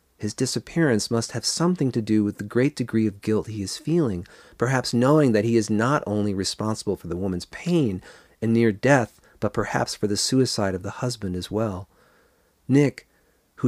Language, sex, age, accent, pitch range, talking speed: English, male, 40-59, American, 100-130 Hz, 190 wpm